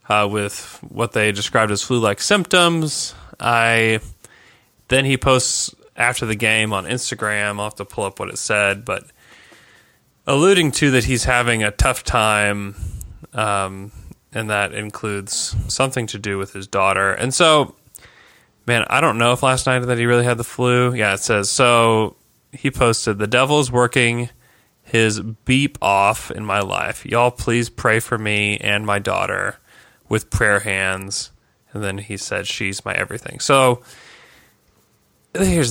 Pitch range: 105-125 Hz